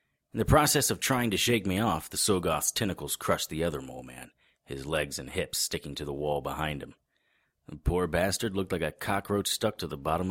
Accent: American